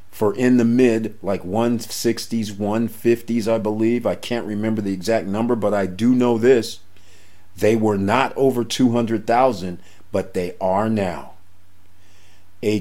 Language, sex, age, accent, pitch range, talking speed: English, male, 50-69, American, 90-110 Hz, 140 wpm